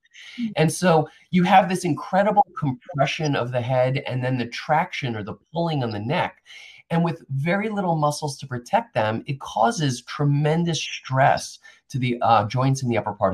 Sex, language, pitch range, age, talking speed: male, English, 115-160 Hz, 30-49, 180 wpm